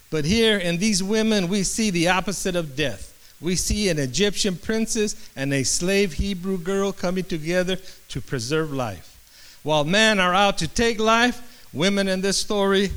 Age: 50-69